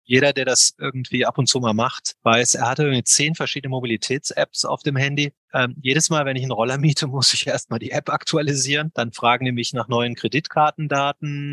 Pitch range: 115-140 Hz